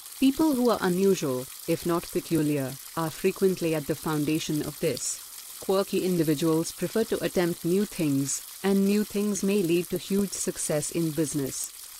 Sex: female